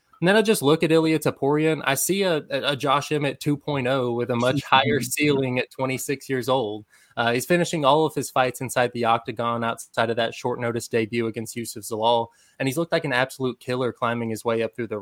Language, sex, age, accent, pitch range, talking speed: English, male, 20-39, American, 120-145 Hz, 225 wpm